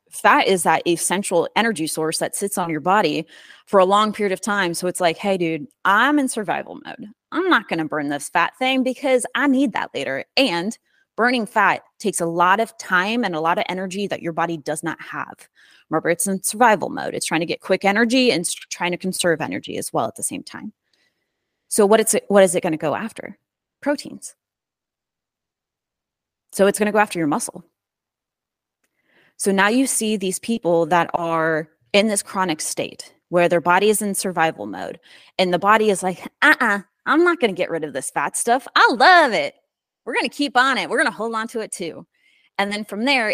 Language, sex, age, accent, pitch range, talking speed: English, female, 30-49, American, 170-230 Hz, 215 wpm